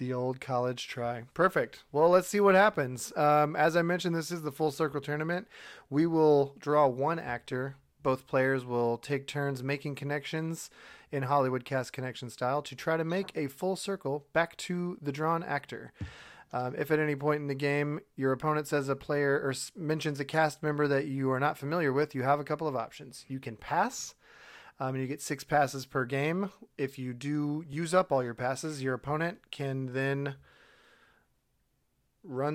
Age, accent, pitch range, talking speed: 30-49, American, 130-155 Hz, 190 wpm